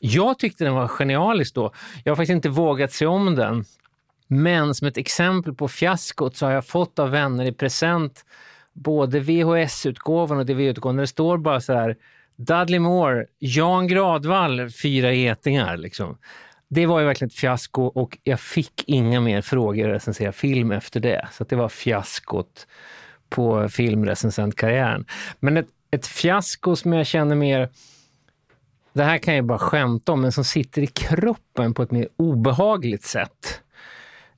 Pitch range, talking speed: 120-150 Hz, 160 wpm